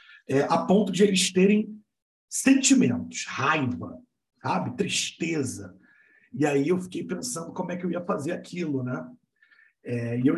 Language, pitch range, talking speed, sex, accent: Portuguese, 140-195 Hz, 150 wpm, male, Brazilian